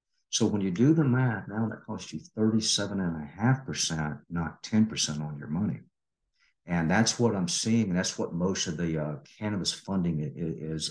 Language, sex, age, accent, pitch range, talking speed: English, male, 50-69, American, 85-120 Hz, 175 wpm